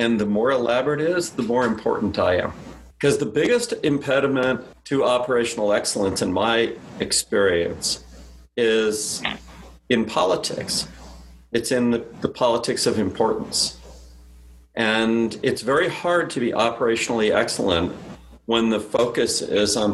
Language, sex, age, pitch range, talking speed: English, male, 40-59, 100-135 Hz, 130 wpm